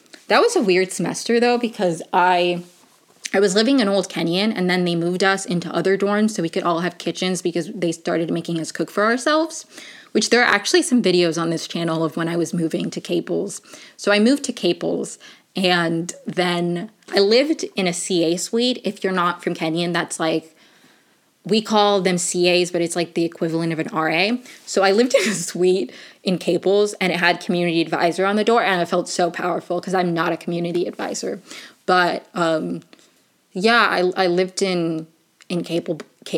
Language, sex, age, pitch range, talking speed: English, female, 20-39, 170-205 Hz, 200 wpm